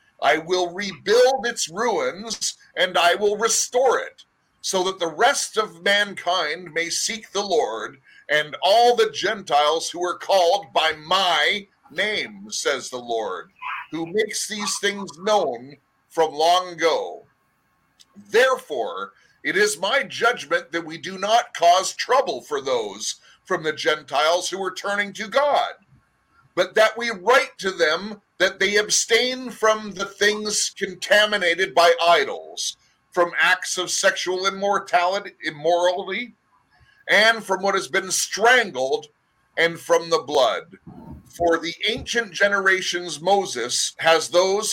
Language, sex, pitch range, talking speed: English, male, 170-220 Hz, 135 wpm